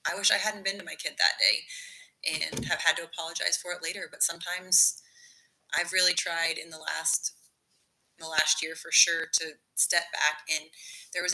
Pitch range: 165-205 Hz